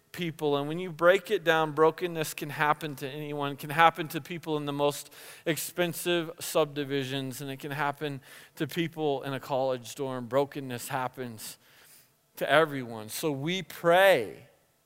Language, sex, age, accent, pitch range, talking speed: English, male, 40-59, American, 155-225 Hz, 160 wpm